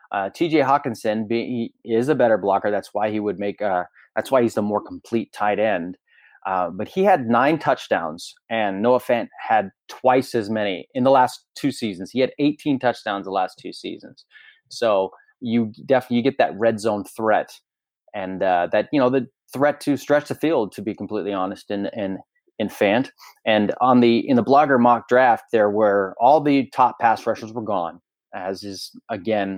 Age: 30-49